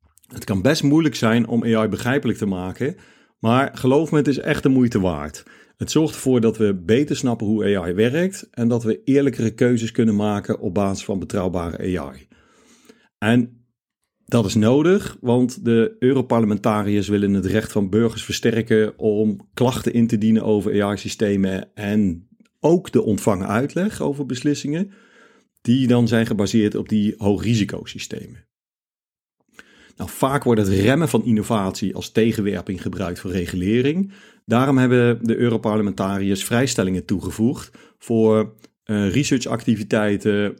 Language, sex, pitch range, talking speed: Dutch, male, 100-125 Hz, 140 wpm